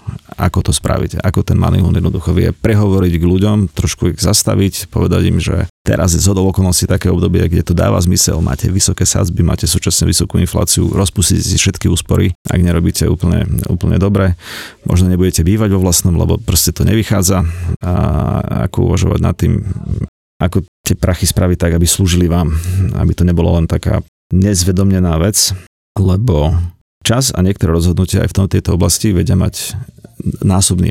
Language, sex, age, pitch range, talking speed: Slovak, male, 30-49, 90-105 Hz, 165 wpm